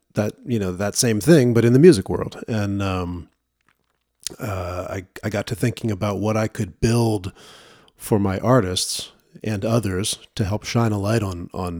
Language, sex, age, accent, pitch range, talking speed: English, male, 40-59, American, 95-115 Hz, 185 wpm